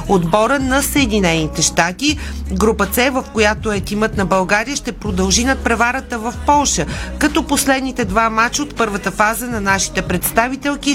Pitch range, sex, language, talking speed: 200-250 Hz, female, Bulgarian, 155 wpm